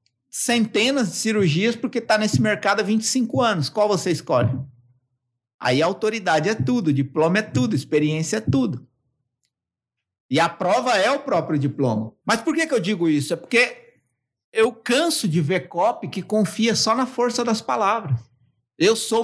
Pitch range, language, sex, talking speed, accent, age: 135-210 Hz, Portuguese, male, 165 wpm, Brazilian, 60-79